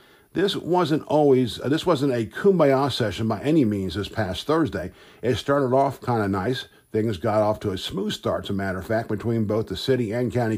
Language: English